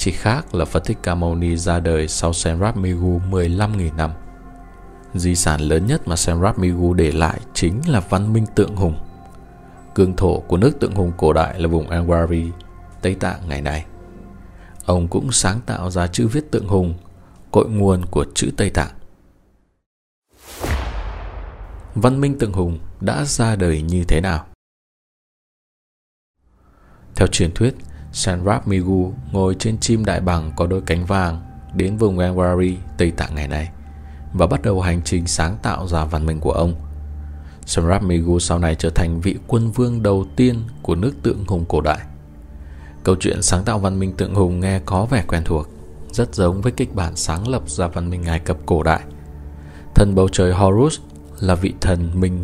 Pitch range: 80-95 Hz